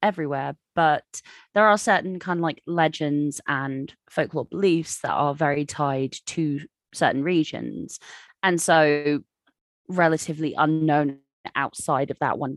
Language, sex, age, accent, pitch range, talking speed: English, female, 20-39, British, 145-185 Hz, 130 wpm